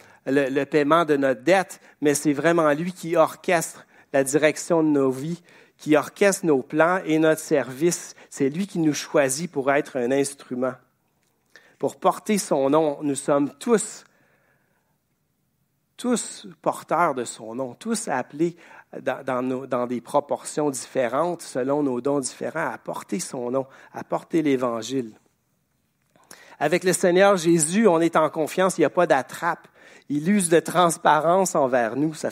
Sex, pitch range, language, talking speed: male, 135-170 Hz, French, 155 wpm